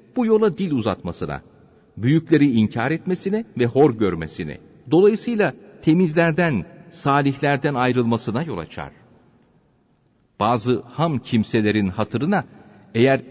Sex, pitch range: male, 105-135 Hz